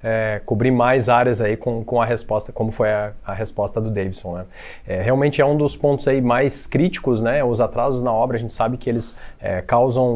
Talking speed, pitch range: 225 wpm, 120-145 Hz